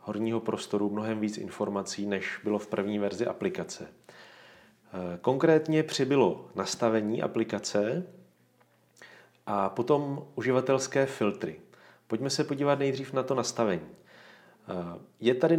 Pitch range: 105-135 Hz